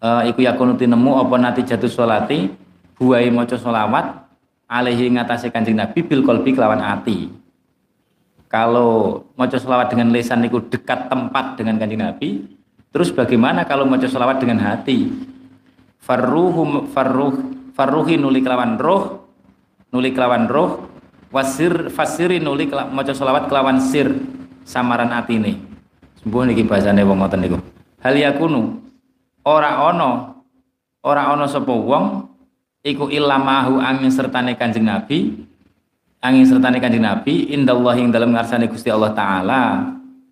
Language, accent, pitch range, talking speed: Indonesian, native, 120-135 Hz, 125 wpm